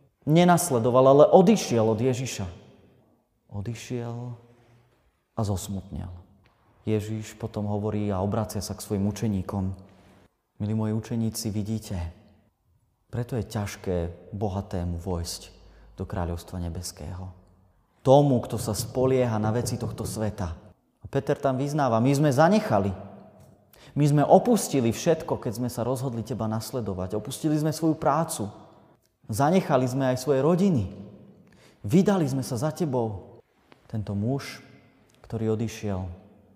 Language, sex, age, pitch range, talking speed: Slovak, male, 30-49, 100-130 Hz, 120 wpm